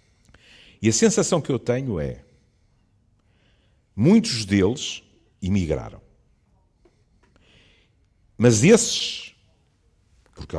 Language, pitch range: Portuguese, 90-130 Hz